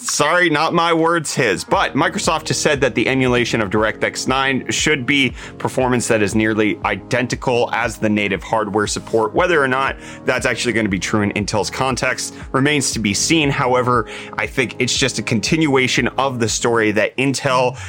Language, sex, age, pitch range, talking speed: English, male, 30-49, 105-140 Hz, 180 wpm